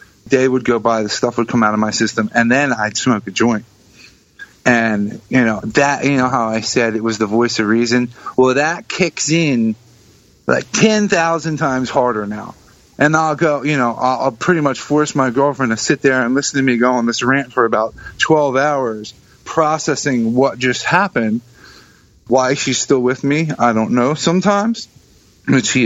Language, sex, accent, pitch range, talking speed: English, male, American, 115-150 Hz, 195 wpm